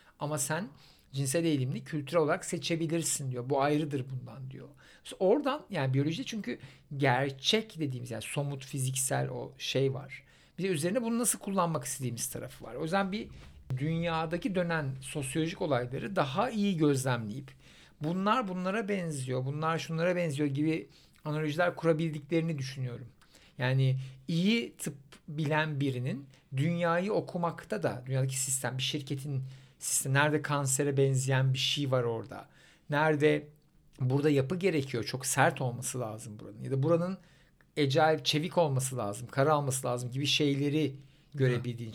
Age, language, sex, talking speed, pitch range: 60-79, Turkish, male, 135 wpm, 130-165 Hz